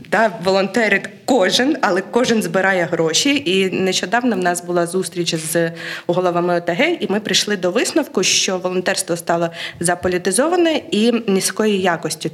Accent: native